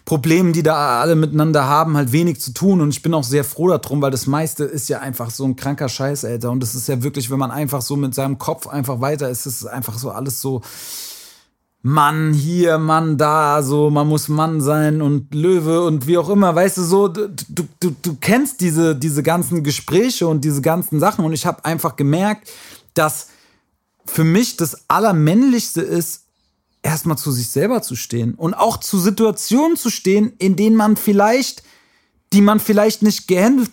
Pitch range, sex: 150-205 Hz, male